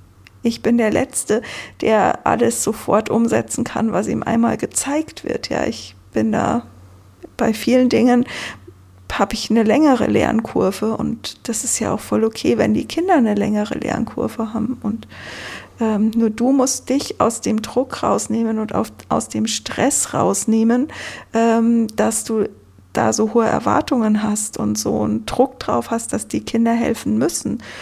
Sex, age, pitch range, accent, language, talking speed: female, 50-69, 215-255 Hz, German, German, 160 wpm